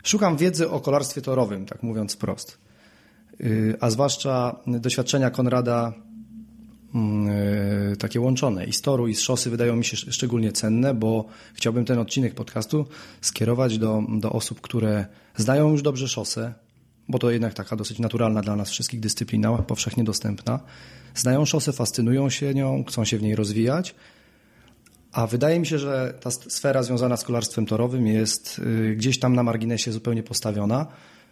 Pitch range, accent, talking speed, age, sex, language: 110-130 Hz, native, 150 wpm, 30-49, male, Polish